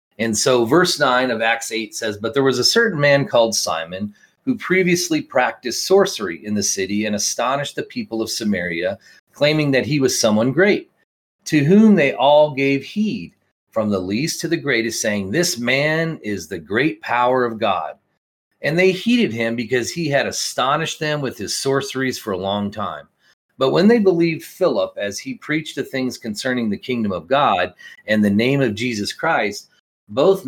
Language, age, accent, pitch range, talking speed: English, 40-59, American, 110-150 Hz, 185 wpm